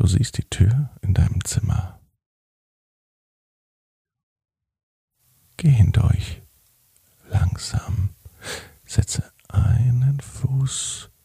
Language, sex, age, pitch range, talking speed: German, male, 40-59, 95-115 Hz, 70 wpm